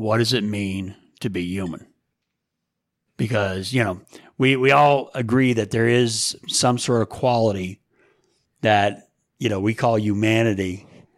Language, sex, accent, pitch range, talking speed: English, male, American, 110-140 Hz, 145 wpm